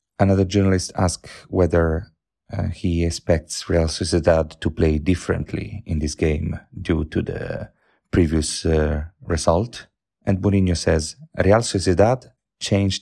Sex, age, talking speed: male, 40-59, 125 wpm